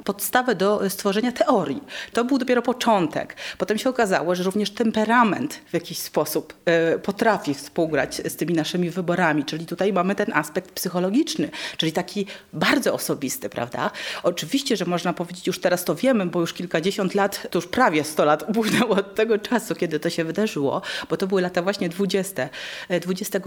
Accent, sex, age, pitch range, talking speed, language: native, female, 30-49, 175-225 Hz, 175 wpm, Polish